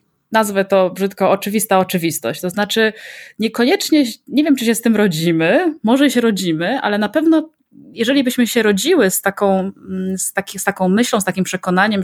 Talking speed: 160 wpm